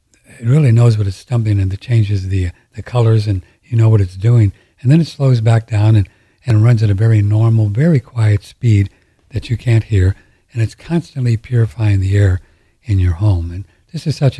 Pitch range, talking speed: 95-115 Hz, 215 wpm